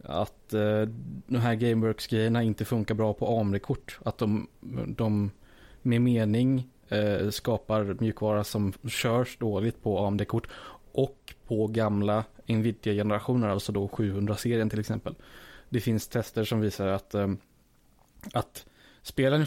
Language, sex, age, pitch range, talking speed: Swedish, male, 20-39, 105-115 Hz, 125 wpm